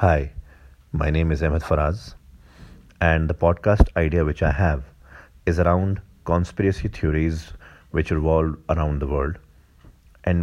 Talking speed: 130 wpm